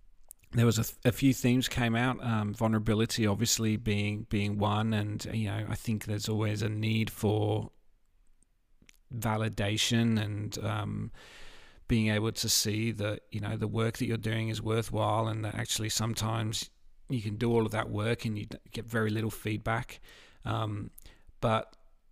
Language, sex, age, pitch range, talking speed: English, male, 40-59, 105-115 Hz, 165 wpm